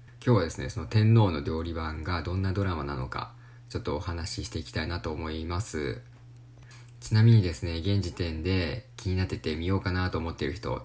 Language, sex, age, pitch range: Japanese, male, 20-39, 90-120 Hz